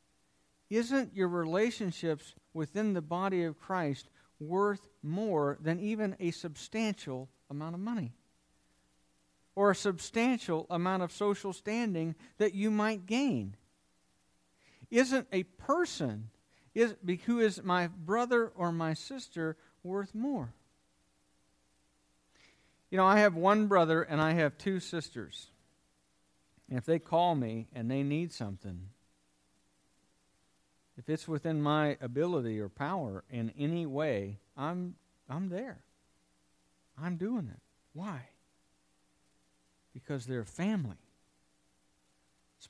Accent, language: American, English